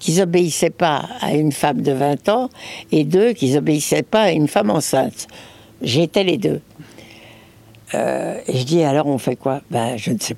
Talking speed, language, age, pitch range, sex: 190 wpm, French, 60-79, 145-195 Hz, female